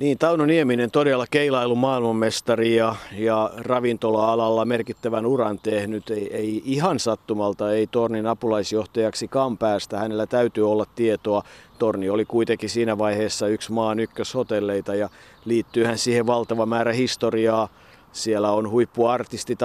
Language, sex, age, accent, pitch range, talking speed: Finnish, male, 50-69, native, 115-140 Hz, 125 wpm